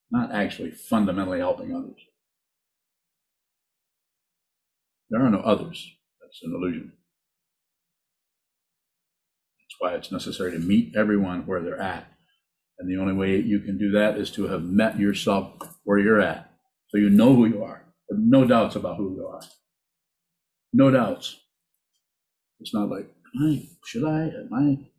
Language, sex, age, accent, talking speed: English, male, 50-69, American, 135 wpm